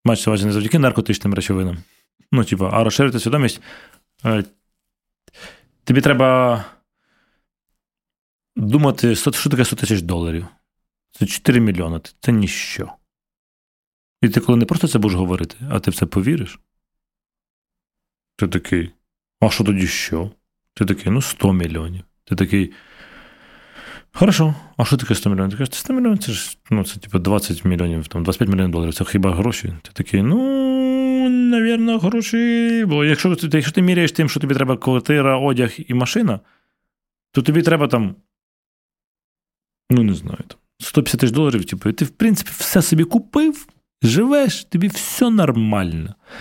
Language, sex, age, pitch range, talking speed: Ukrainian, male, 30-49, 100-155 Hz, 145 wpm